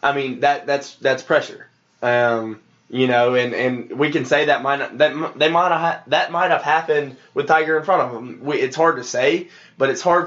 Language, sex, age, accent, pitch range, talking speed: English, male, 20-39, American, 115-135 Hz, 220 wpm